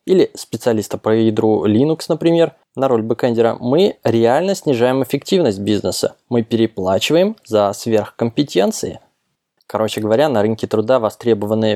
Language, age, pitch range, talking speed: Russian, 20-39, 110-130 Hz, 120 wpm